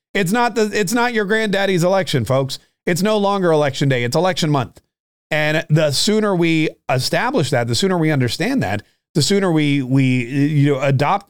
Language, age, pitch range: English, 30-49, 140-180 Hz